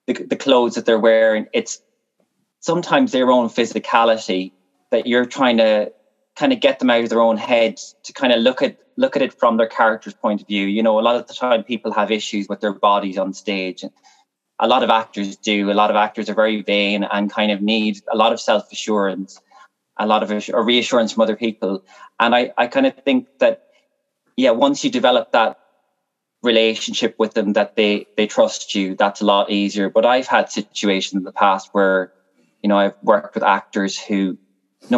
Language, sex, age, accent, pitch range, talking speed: English, male, 20-39, Irish, 100-125 Hz, 210 wpm